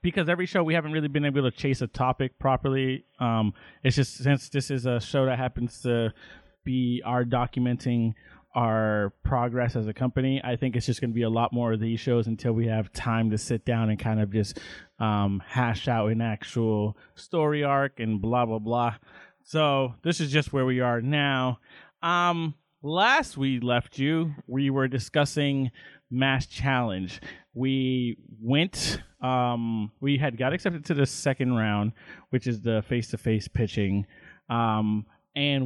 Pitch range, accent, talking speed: 115-140 Hz, American, 175 wpm